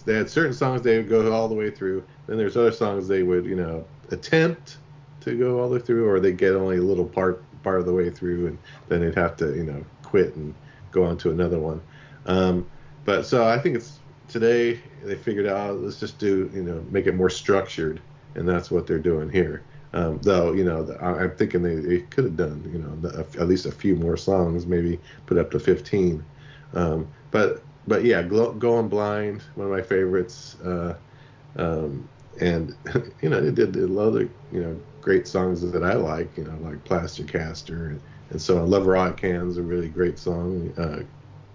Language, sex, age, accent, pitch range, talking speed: English, male, 40-59, American, 85-110 Hz, 215 wpm